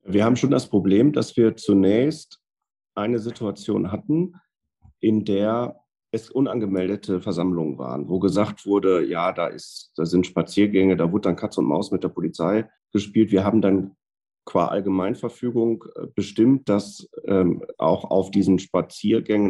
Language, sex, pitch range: German, male, 95-110 Hz